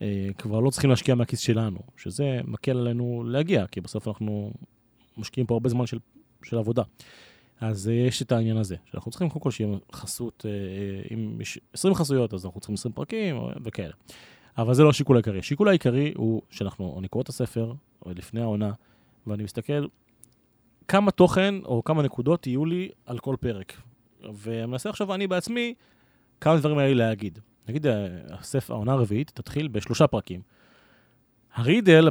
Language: Hebrew